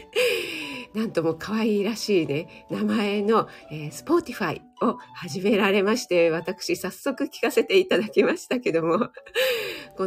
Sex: female